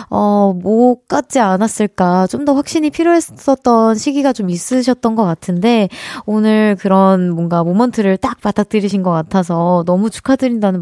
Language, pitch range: Korean, 190-260 Hz